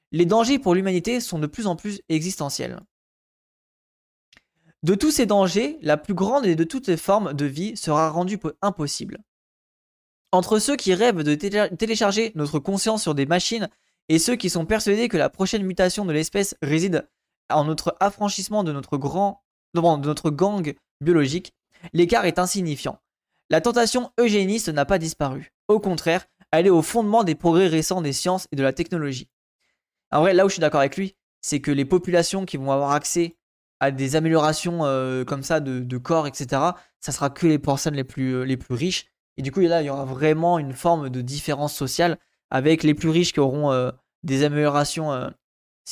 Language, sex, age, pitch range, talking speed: French, male, 20-39, 145-190 Hz, 190 wpm